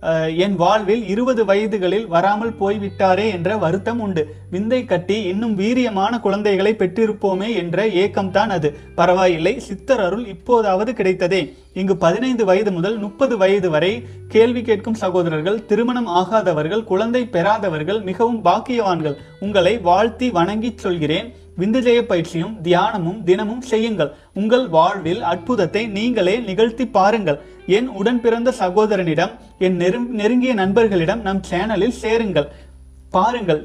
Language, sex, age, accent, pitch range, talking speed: Tamil, male, 30-49, native, 180-225 Hz, 120 wpm